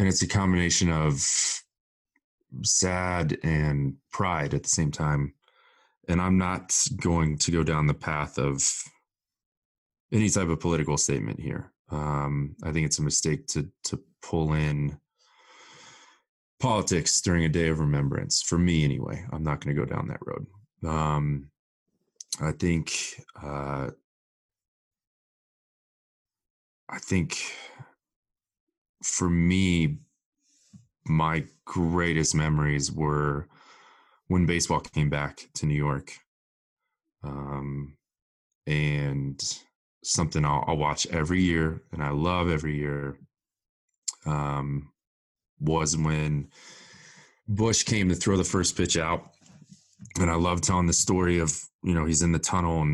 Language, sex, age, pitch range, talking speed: English, male, 30-49, 75-85 Hz, 125 wpm